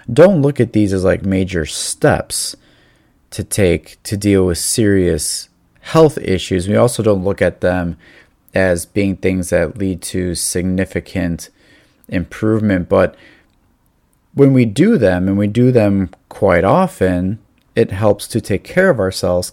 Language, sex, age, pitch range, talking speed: English, male, 30-49, 90-110 Hz, 145 wpm